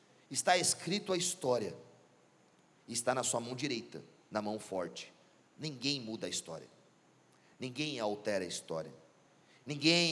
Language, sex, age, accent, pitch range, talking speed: Portuguese, male, 40-59, Brazilian, 155-250 Hz, 125 wpm